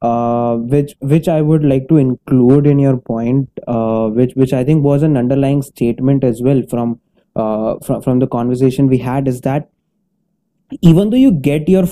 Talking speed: 185 wpm